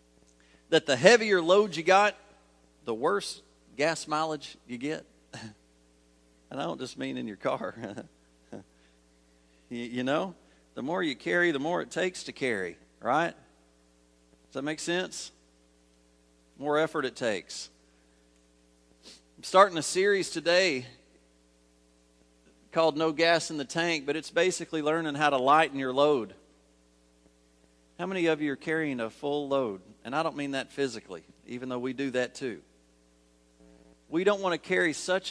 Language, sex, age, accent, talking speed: English, male, 40-59, American, 155 wpm